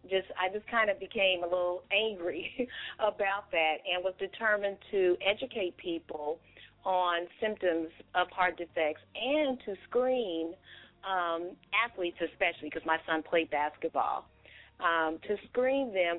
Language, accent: English, American